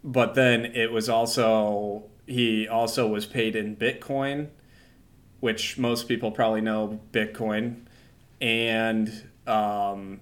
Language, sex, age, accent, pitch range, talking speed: English, male, 20-39, American, 105-120 Hz, 110 wpm